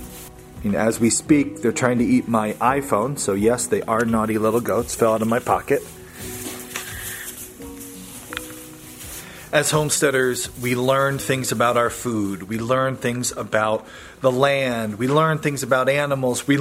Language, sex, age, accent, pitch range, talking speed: English, male, 30-49, American, 115-150 Hz, 150 wpm